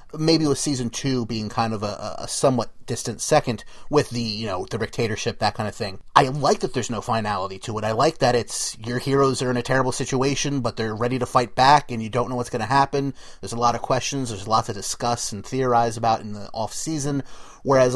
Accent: American